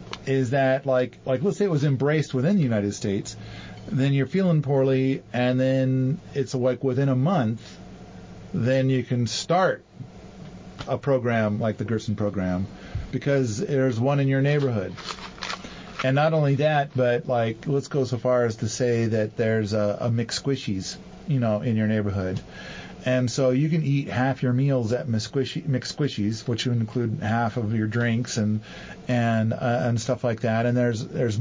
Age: 40-59